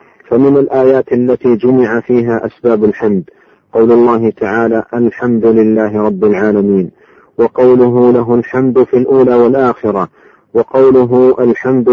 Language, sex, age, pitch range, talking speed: Arabic, male, 40-59, 115-125 Hz, 110 wpm